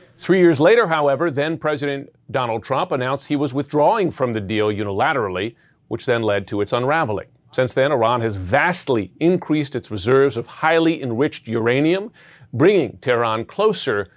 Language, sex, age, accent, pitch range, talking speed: English, male, 40-59, American, 115-150 Hz, 155 wpm